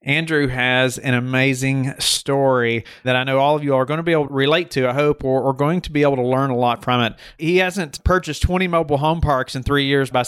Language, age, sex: English, 30-49, male